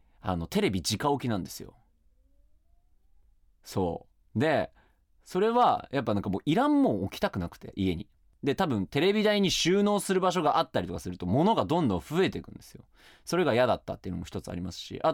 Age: 30-49